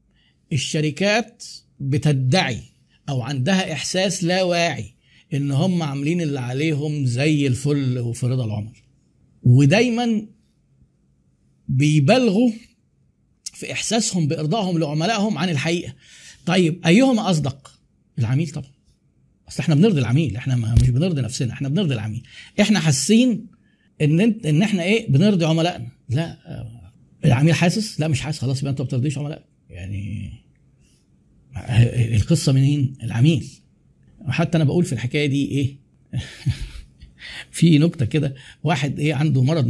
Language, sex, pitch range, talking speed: Arabic, male, 130-170 Hz, 120 wpm